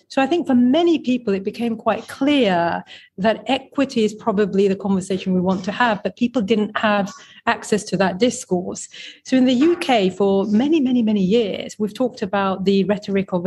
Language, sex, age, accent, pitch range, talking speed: English, female, 40-59, British, 190-245 Hz, 190 wpm